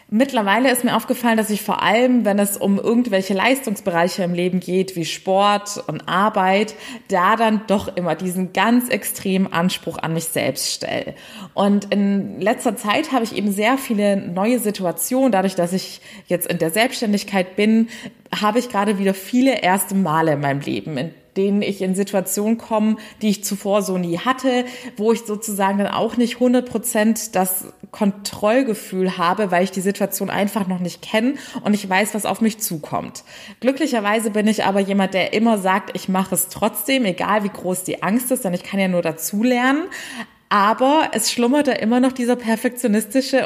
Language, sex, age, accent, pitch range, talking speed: German, female, 20-39, German, 195-235 Hz, 180 wpm